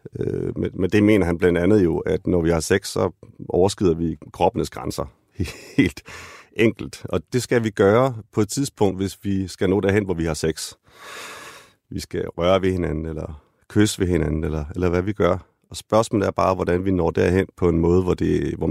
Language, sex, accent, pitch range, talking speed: Danish, male, native, 85-100 Hz, 200 wpm